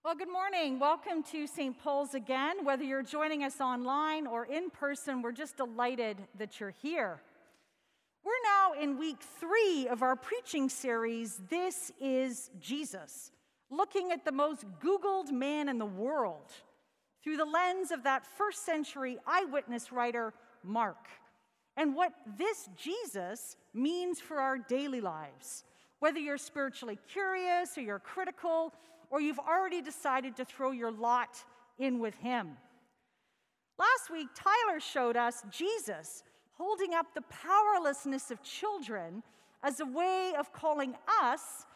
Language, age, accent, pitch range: English, 50-69, American, 245-330 Hz